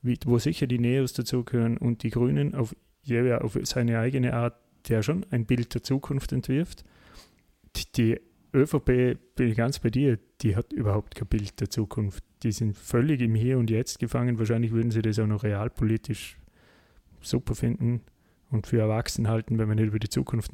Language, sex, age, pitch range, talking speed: German, male, 30-49, 110-130 Hz, 180 wpm